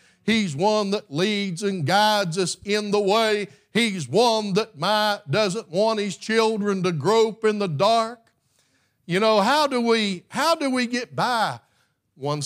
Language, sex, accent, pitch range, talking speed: English, male, American, 140-205 Hz, 165 wpm